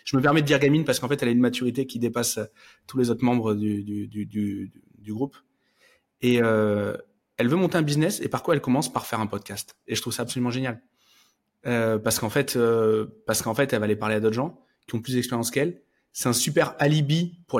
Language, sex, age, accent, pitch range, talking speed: French, male, 20-39, French, 120-145 Hz, 245 wpm